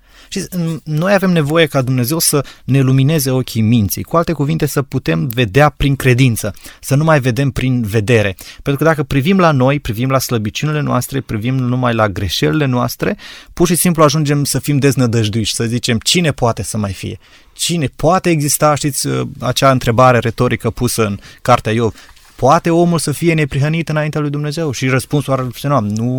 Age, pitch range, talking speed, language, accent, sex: 20-39, 115-145 Hz, 175 wpm, Romanian, native, male